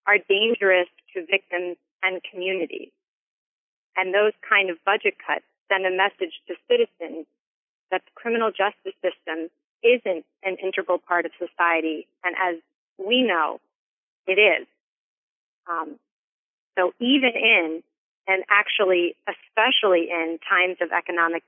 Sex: female